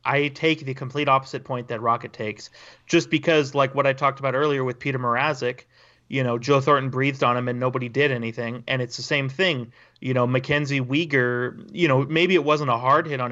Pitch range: 125-150 Hz